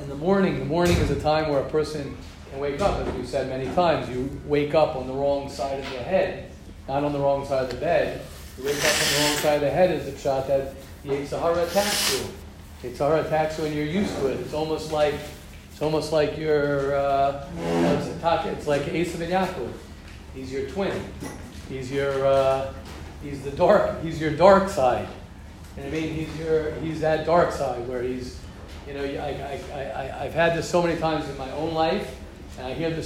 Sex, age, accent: male, 40-59, American